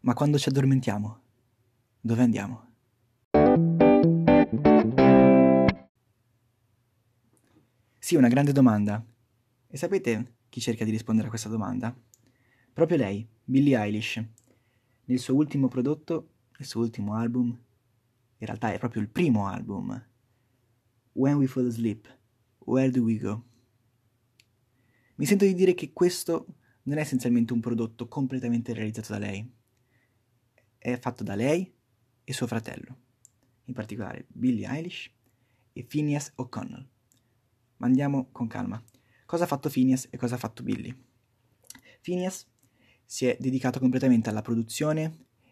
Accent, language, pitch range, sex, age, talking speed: native, Italian, 115-130 Hz, male, 20-39, 125 wpm